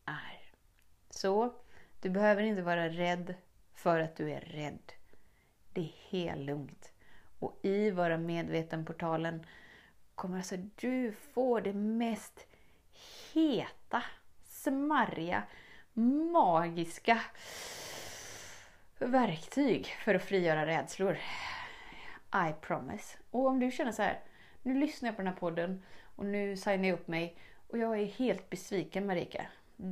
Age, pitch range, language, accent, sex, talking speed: 30-49, 175-235 Hz, Swedish, native, female, 120 wpm